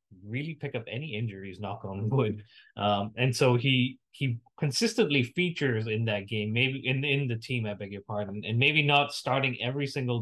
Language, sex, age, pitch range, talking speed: English, male, 20-39, 110-135 Hz, 195 wpm